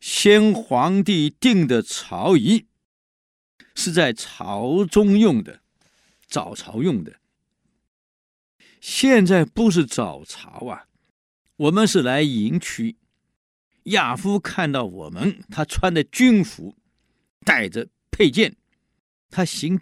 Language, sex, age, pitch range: Chinese, male, 50-69, 135-205 Hz